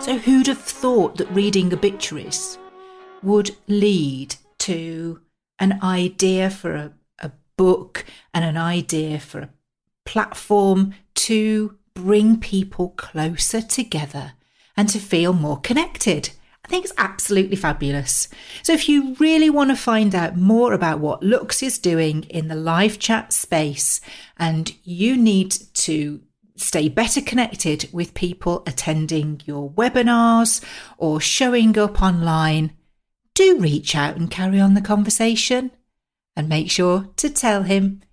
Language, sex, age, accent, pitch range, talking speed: English, female, 40-59, British, 155-215 Hz, 135 wpm